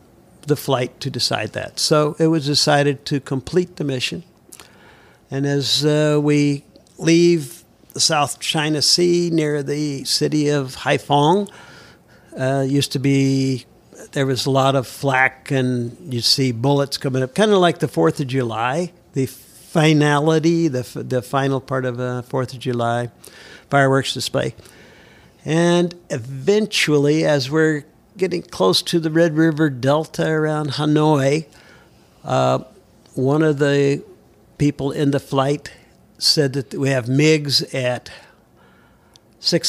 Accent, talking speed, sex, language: American, 140 wpm, male, English